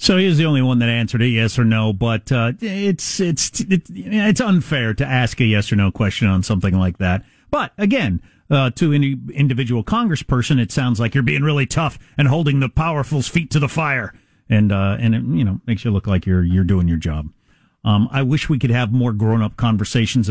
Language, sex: English, male